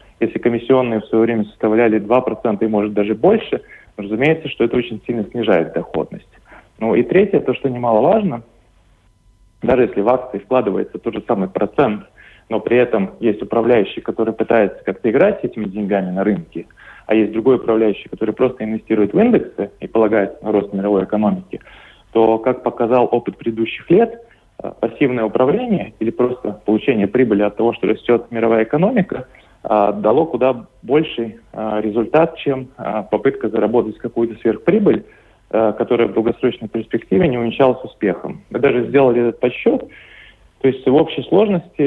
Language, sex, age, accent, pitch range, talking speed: Russian, male, 30-49, native, 110-130 Hz, 155 wpm